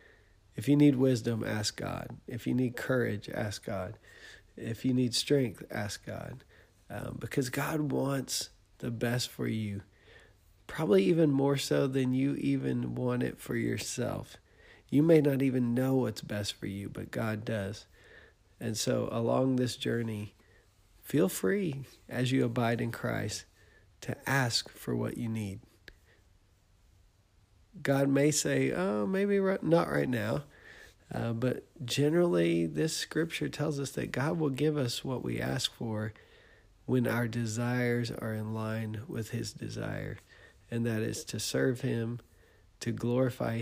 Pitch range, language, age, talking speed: 105-130 Hz, English, 40-59, 150 wpm